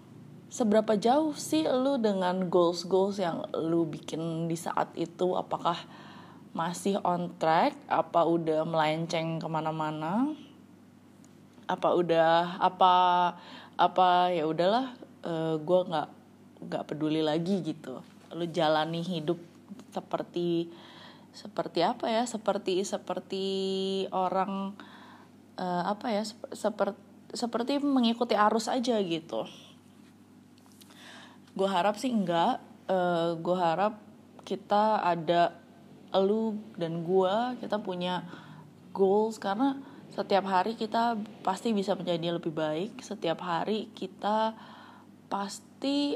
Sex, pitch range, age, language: female, 175-225 Hz, 20-39, English